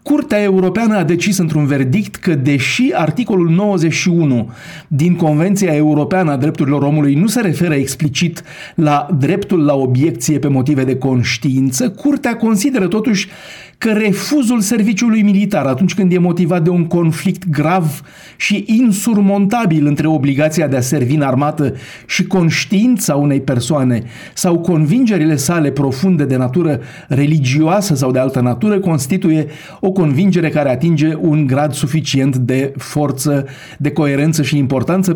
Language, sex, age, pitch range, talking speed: Romanian, male, 50-69, 135-180 Hz, 140 wpm